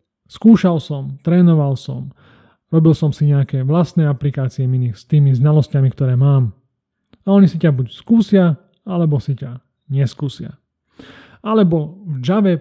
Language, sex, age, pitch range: Slovak, male, 30-49, 130-160 Hz